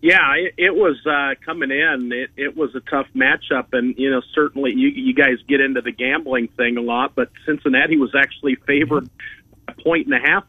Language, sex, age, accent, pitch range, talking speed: English, male, 50-69, American, 125-150 Hz, 205 wpm